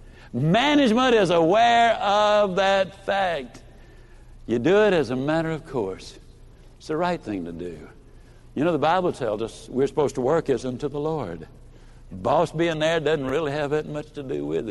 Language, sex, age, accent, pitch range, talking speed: English, male, 60-79, American, 125-205 Hz, 185 wpm